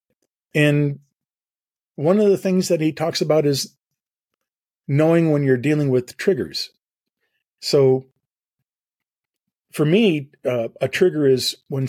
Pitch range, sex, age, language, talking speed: 115-140 Hz, male, 40-59, English, 120 wpm